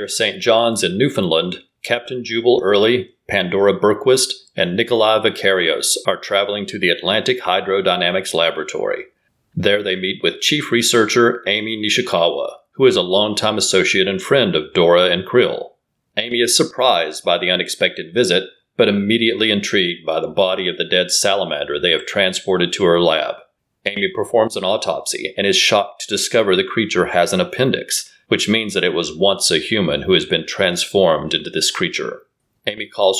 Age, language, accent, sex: 40-59, English, American, male